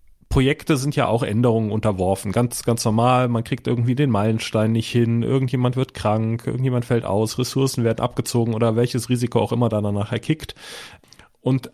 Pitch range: 115-140 Hz